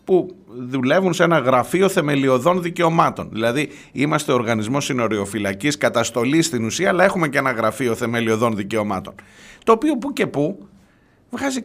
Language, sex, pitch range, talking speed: Greek, male, 110-150 Hz, 140 wpm